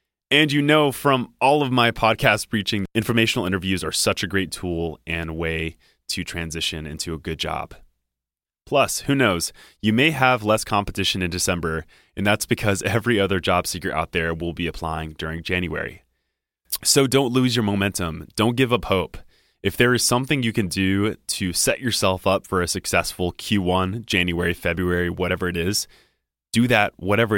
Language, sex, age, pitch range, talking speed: English, male, 20-39, 90-115 Hz, 175 wpm